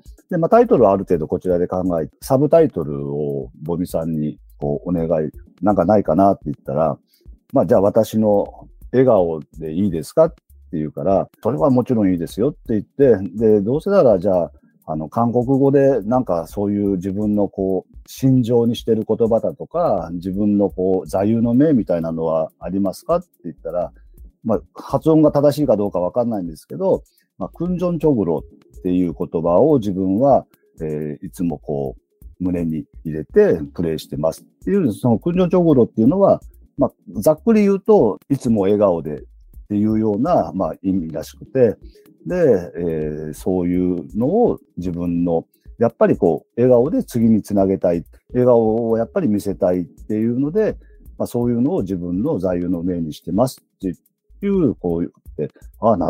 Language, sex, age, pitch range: Japanese, male, 40-59, 85-120 Hz